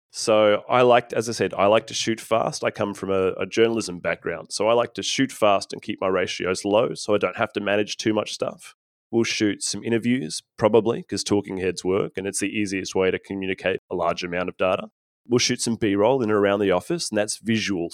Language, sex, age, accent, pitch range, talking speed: English, male, 20-39, Australian, 100-120 Hz, 240 wpm